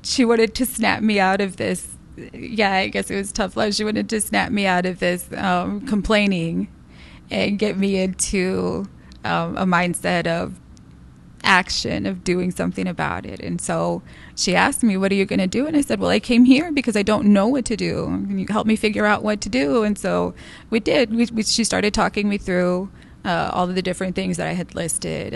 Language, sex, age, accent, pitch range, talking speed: English, female, 20-39, American, 165-210 Hz, 220 wpm